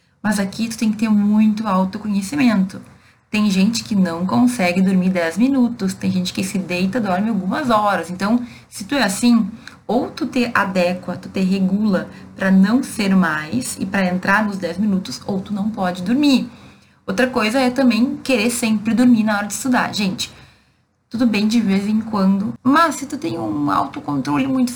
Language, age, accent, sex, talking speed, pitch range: Portuguese, 20-39, Brazilian, female, 185 wpm, 195-245 Hz